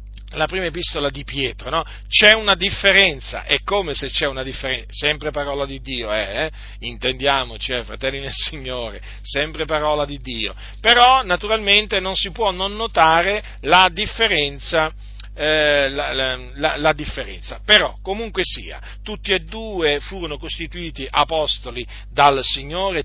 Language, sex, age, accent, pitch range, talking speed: Italian, male, 40-59, native, 125-180 Hz, 140 wpm